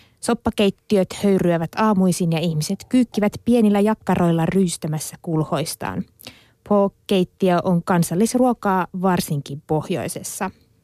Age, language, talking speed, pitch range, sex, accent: 20-39, Finnish, 85 wpm, 160-205 Hz, female, native